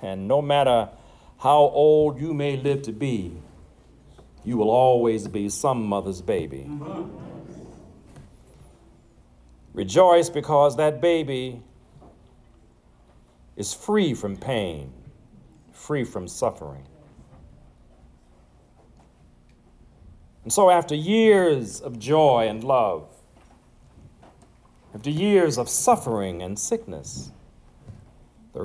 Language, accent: English, American